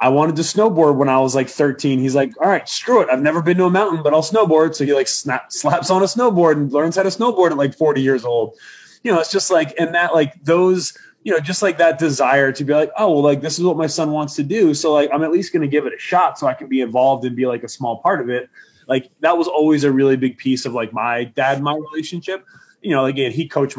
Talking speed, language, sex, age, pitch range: 290 wpm, English, male, 20-39, 130-160 Hz